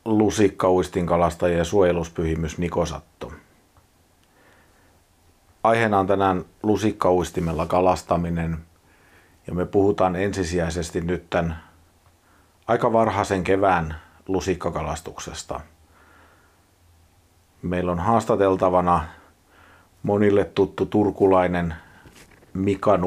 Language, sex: Finnish, male